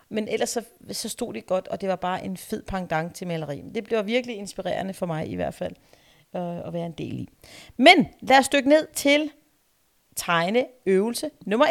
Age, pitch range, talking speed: 40-59, 180-260 Hz, 200 wpm